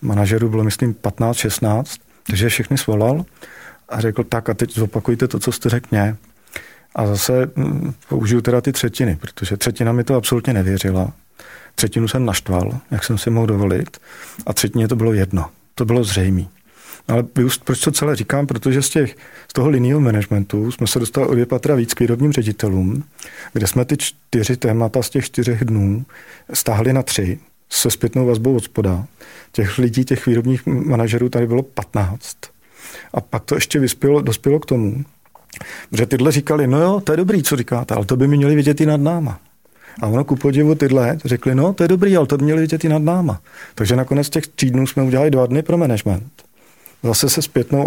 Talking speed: 185 wpm